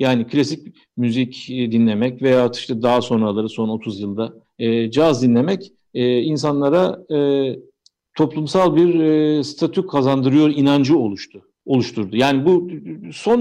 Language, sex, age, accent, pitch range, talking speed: Turkish, male, 50-69, native, 125-180 Hz, 125 wpm